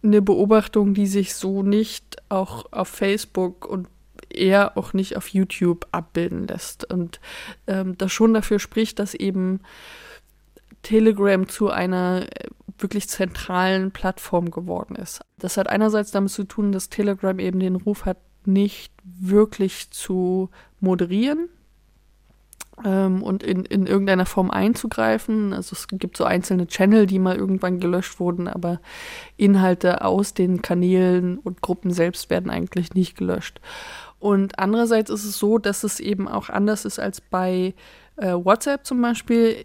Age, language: 20-39, German